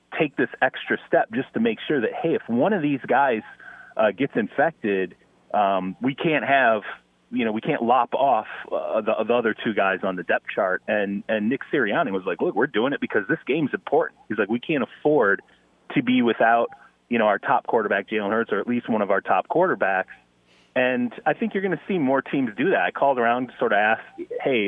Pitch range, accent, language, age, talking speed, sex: 100-160 Hz, American, English, 30-49, 230 wpm, male